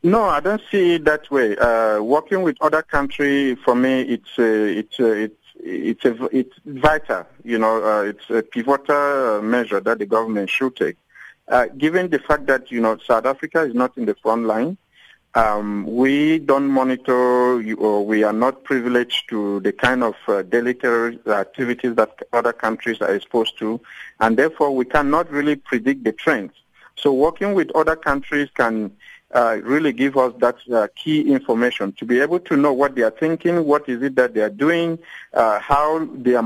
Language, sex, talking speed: English, male, 185 wpm